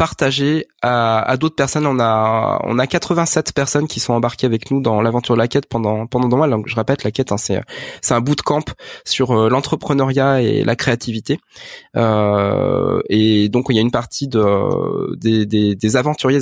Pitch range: 115-145 Hz